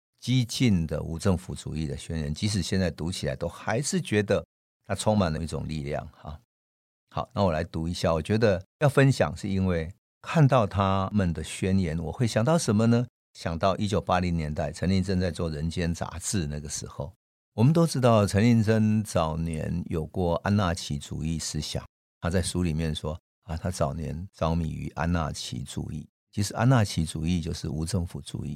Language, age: Chinese, 50-69